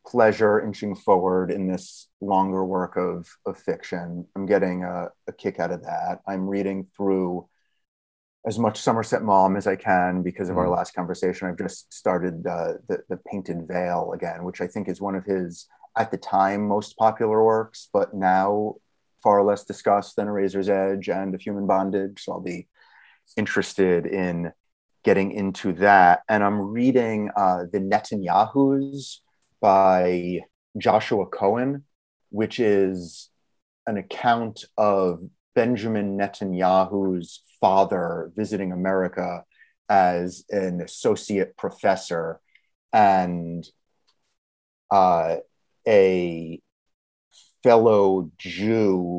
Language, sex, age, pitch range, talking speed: English, male, 30-49, 90-100 Hz, 125 wpm